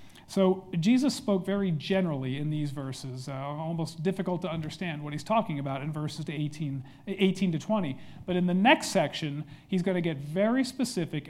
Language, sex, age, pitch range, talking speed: English, male, 40-59, 150-195 Hz, 175 wpm